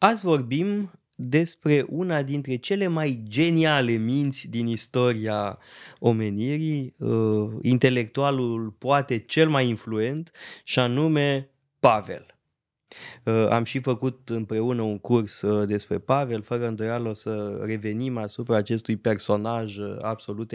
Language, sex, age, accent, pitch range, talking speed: Romanian, male, 20-39, native, 110-140 Hz, 115 wpm